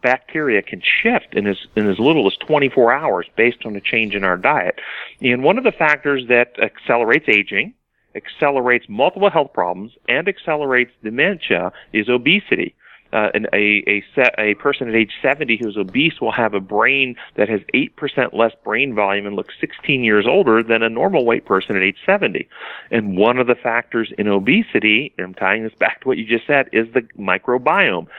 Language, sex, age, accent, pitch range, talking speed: English, male, 40-59, American, 110-135 Hz, 190 wpm